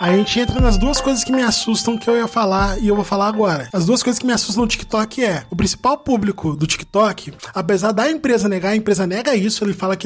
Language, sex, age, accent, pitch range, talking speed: Portuguese, male, 20-39, Brazilian, 200-235 Hz, 255 wpm